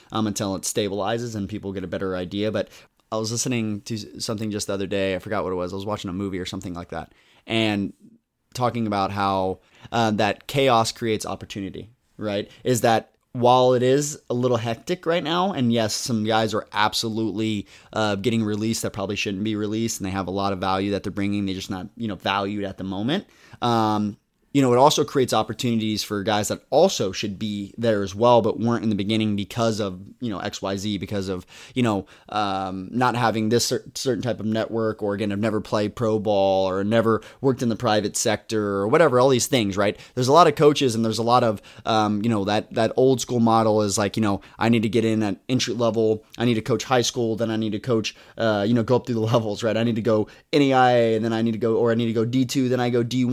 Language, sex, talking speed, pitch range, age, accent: English, male, 245 wpm, 105-120 Hz, 20-39, American